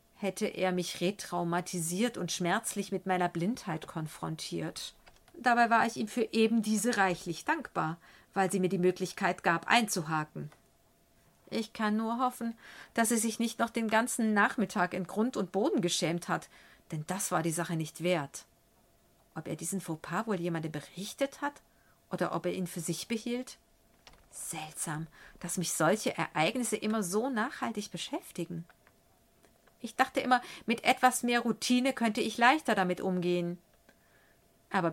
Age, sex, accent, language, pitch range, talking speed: 40-59, female, German, German, 175-230 Hz, 150 wpm